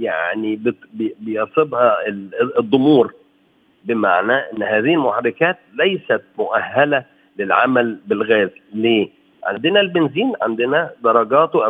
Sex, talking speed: male, 80 wpm